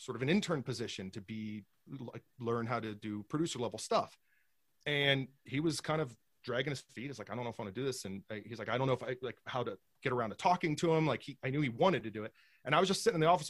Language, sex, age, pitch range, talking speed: English, male, 30-49, 120-170 Hz, 300 wpm